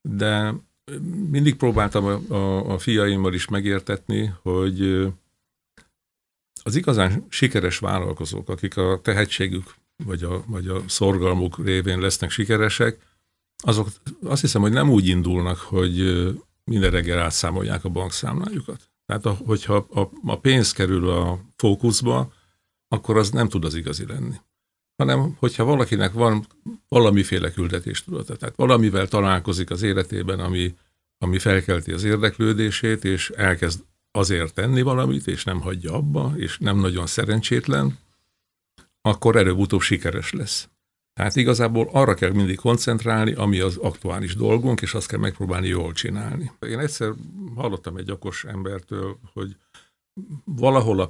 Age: 50-69